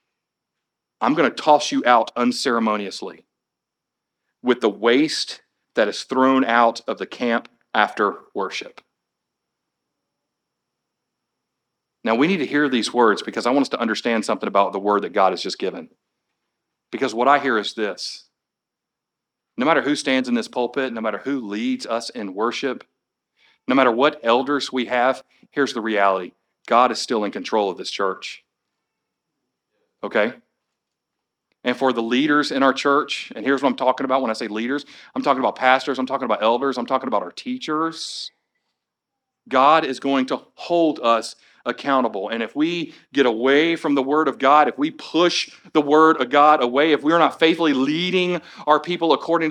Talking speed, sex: 175 wpm, male